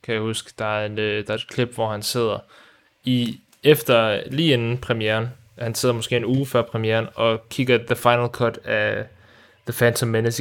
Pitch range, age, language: 110-120 Hz, 20-39, Danish